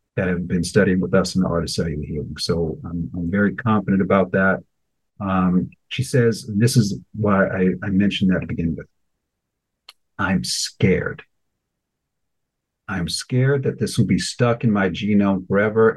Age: 50-69